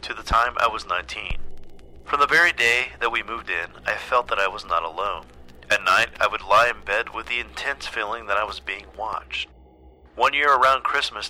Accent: American